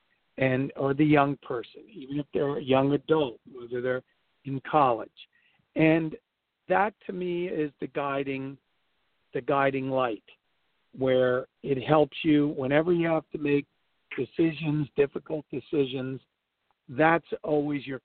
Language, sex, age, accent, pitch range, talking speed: English, male, 50-69, American, 135-170 Hz, 135 wpm